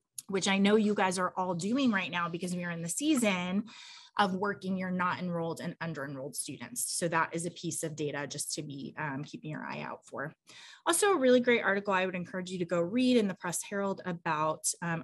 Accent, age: American, 20-39